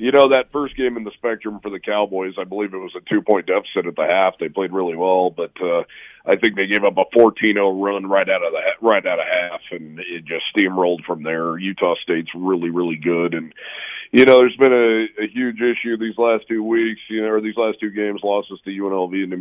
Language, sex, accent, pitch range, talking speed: English, male, American, 95-120 Hz, 245 wpm